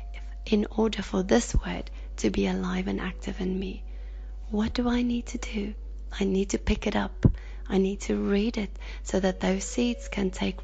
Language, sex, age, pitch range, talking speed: English, female, 30-49, 190-225 Hz, 195 wpm